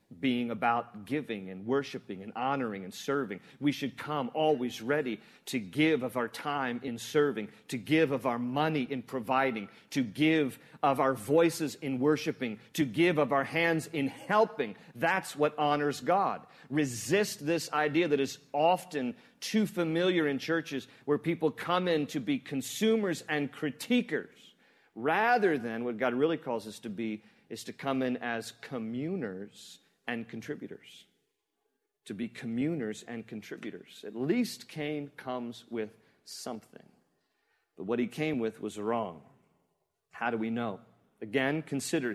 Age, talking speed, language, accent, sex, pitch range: 40-59, 150 wpm, English, American, male, 120-160 Hz